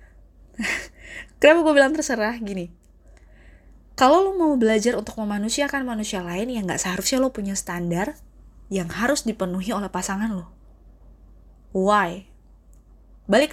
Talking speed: 120 wpm